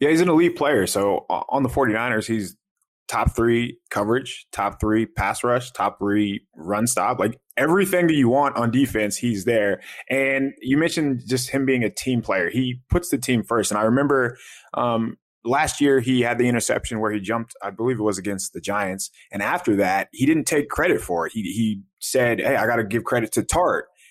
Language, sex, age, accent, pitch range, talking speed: English, male, 20-39, American, 100-130 Hz, 210 wpm